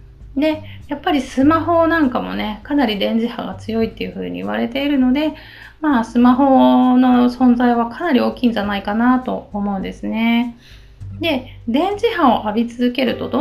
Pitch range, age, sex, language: 215-280 Hz, 30-49, female, Japanese